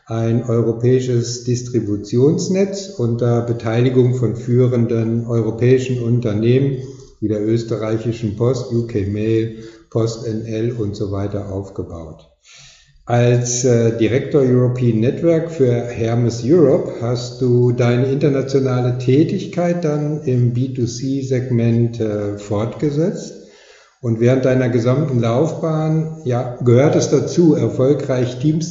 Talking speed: 100 wpm